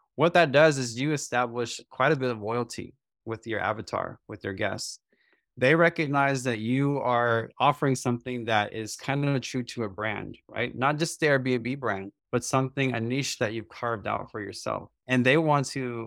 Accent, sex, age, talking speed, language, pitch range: American, male, 20-39, 195 wpm, English, 115-135 Hz